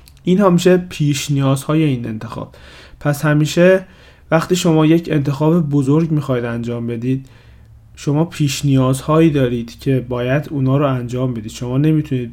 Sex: male